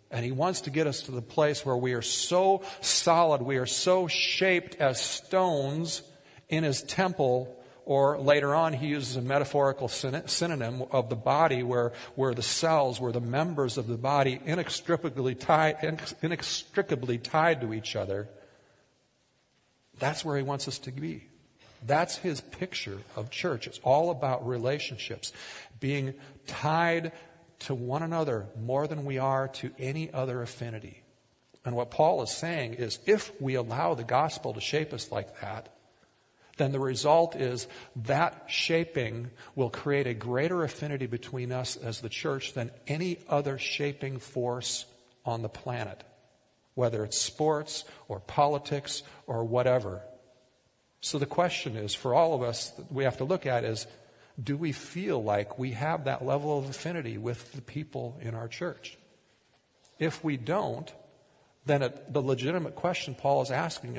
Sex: male